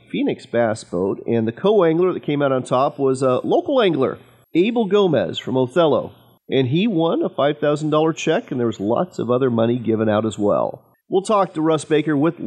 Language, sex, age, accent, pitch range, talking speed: English, male, 40-59, American, 115-155 Hz, 210 wpm